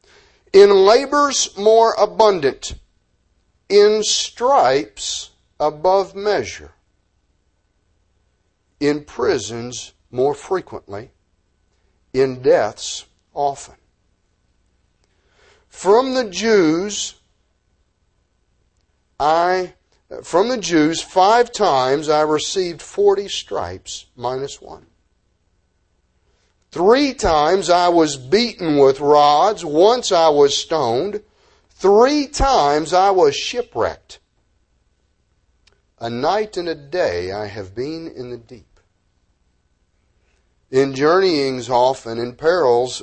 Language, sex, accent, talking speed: English, male, American, 85 wpm